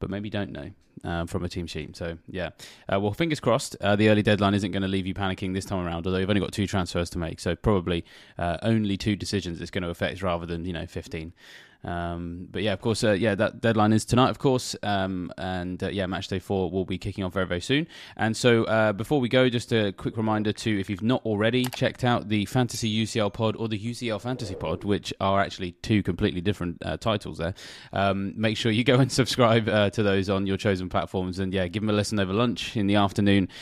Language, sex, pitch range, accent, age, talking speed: English, male, 95-110 Hz, British, 20-39, 245 wpm